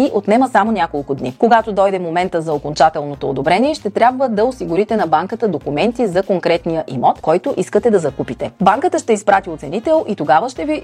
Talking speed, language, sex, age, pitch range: 185 wpm, Bulgarian, female, 30-49, 170-240 Hz